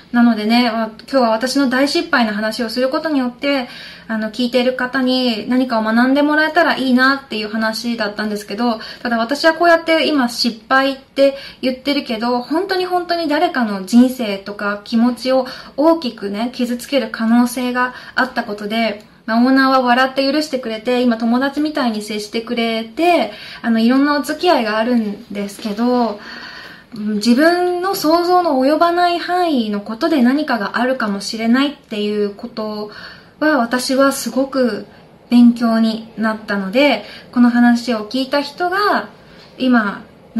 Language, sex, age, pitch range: Japanese, female, 20-39, 220-275 Hz